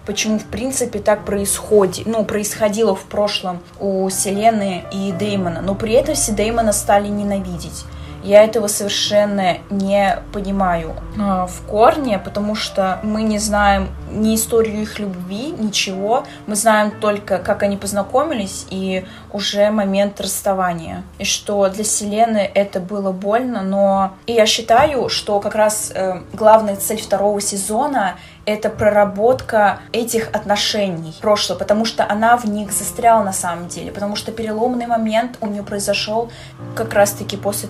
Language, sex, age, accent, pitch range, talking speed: Russian, female, 20-39, native, 195-220 Hz, 145 wpm